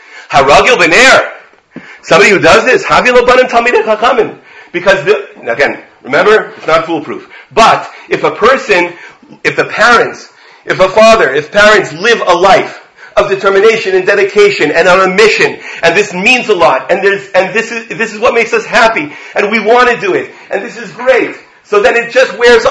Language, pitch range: English, 155-245 Hz